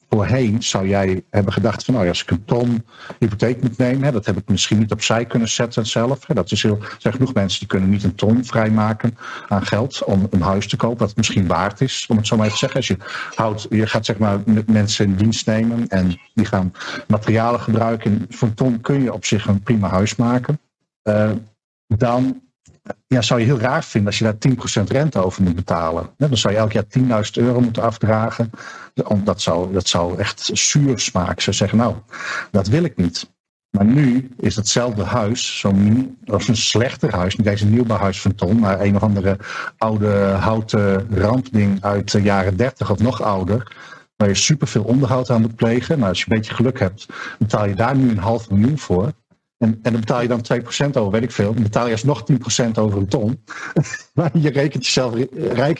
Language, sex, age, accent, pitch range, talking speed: Dutch, male, 50-69, Dutch, 100-125 Hz, 215 wpm